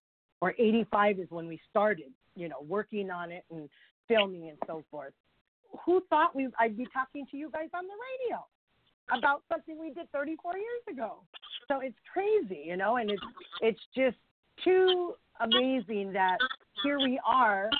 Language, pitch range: English, 185-250 Hz